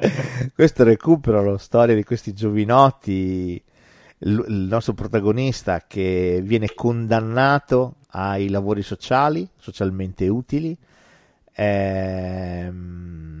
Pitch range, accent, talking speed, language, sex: 100-135 Hz, native, 85 wpm, Italian, male